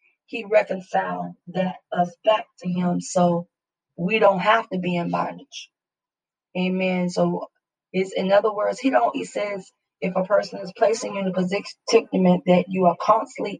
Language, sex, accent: English, female, American